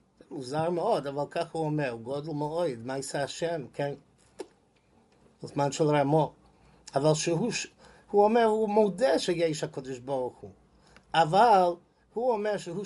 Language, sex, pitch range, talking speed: English, male, 150-200 Hz, 135 wpm